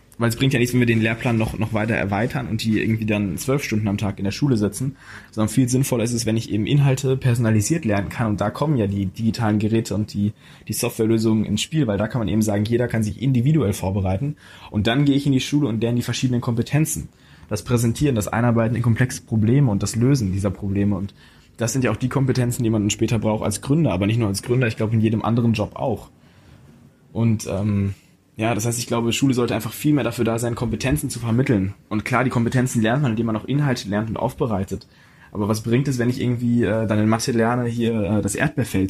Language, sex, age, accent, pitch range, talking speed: German, male, 20-39, German, 105-130 Hz, 245 wpm